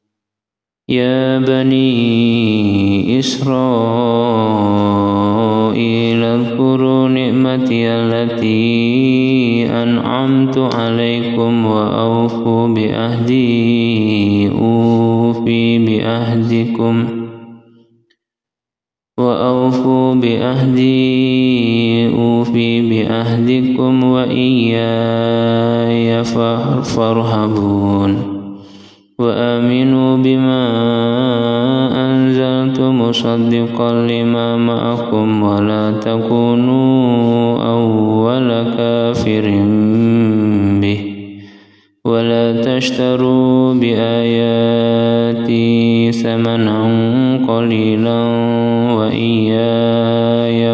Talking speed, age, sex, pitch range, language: 40 wpm, 20-39, male, 115-125 Hz, Indonesian